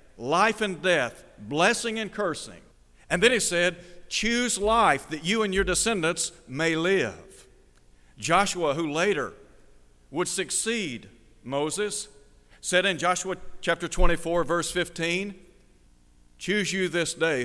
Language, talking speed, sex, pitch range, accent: English, 125 wpm, male, 125-190 Hz, American